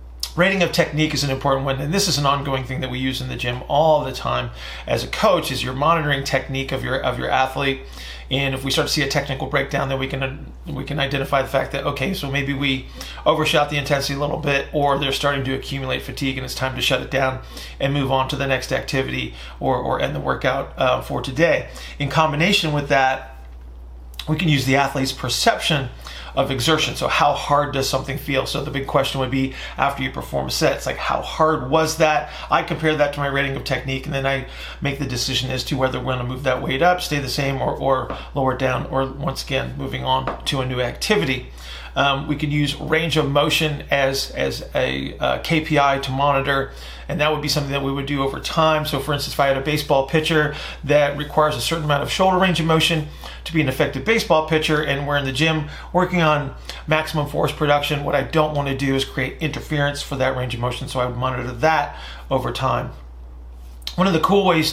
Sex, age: male, 40-59